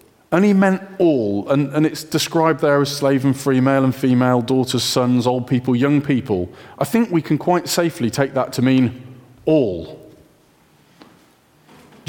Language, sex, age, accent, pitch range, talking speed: English, male, 40-59, British, 125-160 Hz, 165 wpm